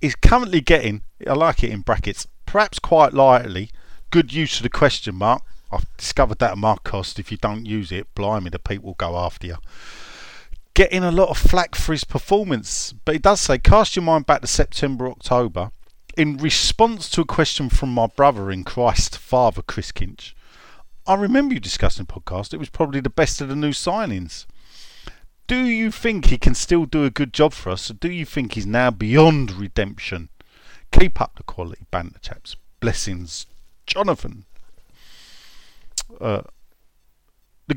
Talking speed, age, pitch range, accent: 175 wpm, 40-59, 95-160 Hz, British